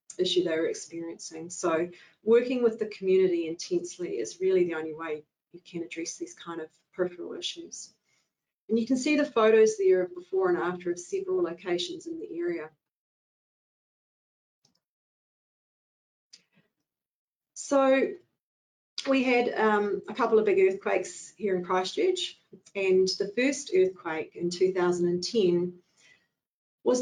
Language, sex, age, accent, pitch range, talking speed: English, female, 40-59, Australian, 175-265 Hz, 130 wpm